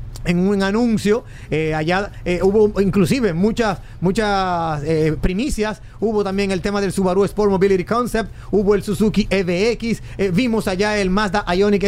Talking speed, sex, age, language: 155 wpm, male, 30-49, Spanish